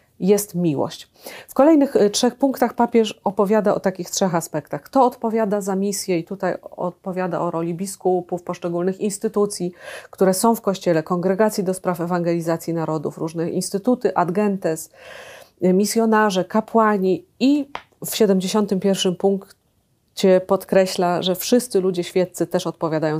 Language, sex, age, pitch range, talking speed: Polish, female, 30-49, 175-205 Hz, 130 wpm